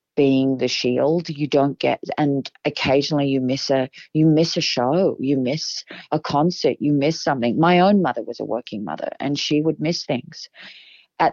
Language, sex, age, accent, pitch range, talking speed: English, female, 40-59, Australian, 135-155 Hz, 185 wpm